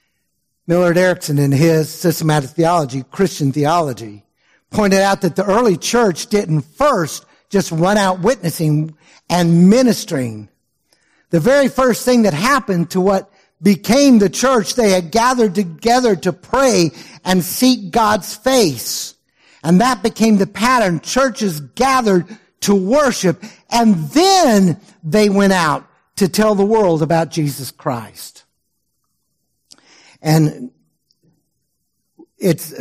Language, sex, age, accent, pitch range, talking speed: English, male, 60-79, American, 165-230 Hz, 120 wpm